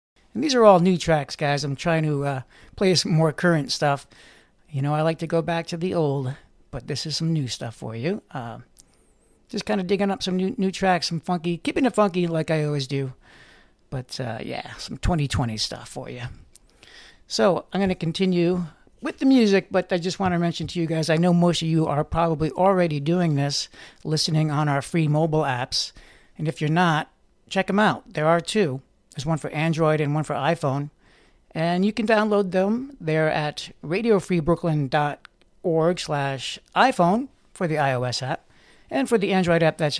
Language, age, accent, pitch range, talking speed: English, 60-79, American, 145-180 Hz, 200 wpm